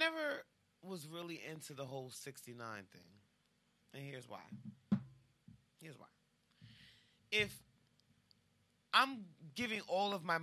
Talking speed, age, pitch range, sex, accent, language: 110 wpm, 30-49, 130-180 Hz, male, American, English